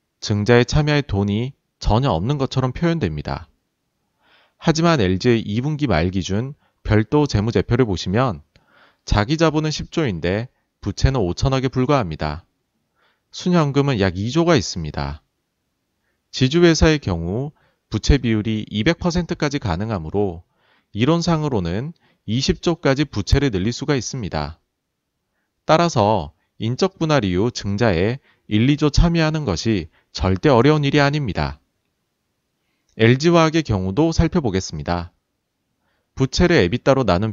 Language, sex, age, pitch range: Korean, male, 40-59, 95-150 Hz